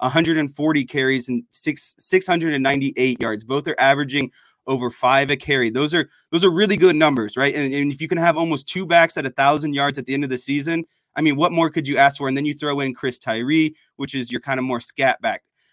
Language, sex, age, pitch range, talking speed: English, male, 20-39, 135-170 Hz, 235 wpm